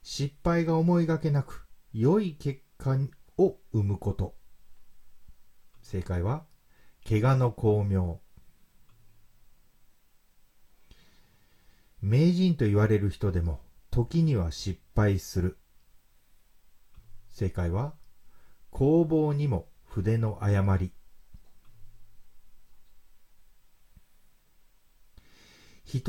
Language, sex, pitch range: Japanese, male, 90-130 Hz